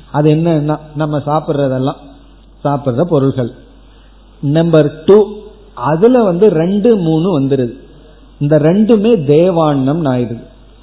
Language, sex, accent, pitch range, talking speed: Tamil, male, native, 130-170 Hz, 95 wpm